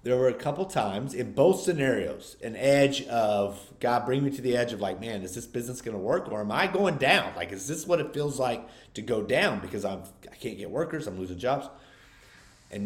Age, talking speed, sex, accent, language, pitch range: 30-49, 240 wpm, male, American, English, 100-135 Hz